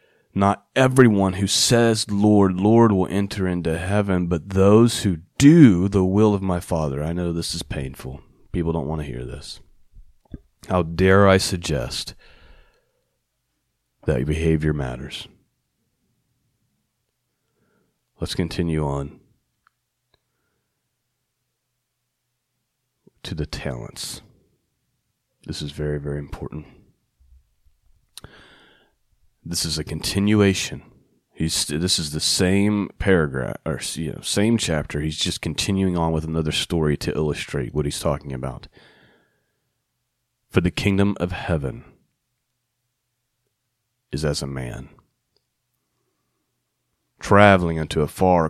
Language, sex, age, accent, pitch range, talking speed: English, male, 40-59, American, 75-105 Hz, 110 wpm